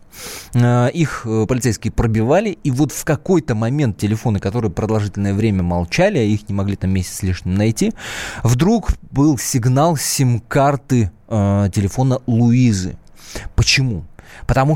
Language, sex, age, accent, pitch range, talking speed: Russian, male, 20-39, native, 95-125 Hz, 120 wpm